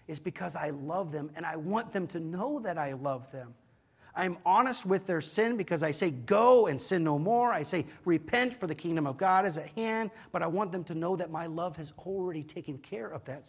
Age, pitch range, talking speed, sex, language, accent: 40-59, 130-165 Hz, 240 wpm, male, English, American